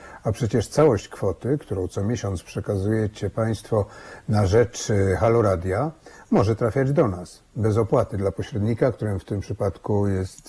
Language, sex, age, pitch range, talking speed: Polish, male, 50-69, 100-130 Hz, 145 wpm